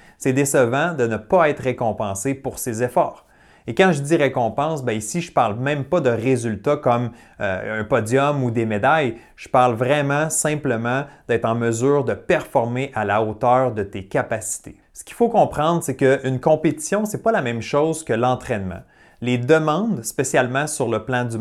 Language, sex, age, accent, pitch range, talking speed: French, male, 30-49, Canadian, 115-155 Hz, 190 wpm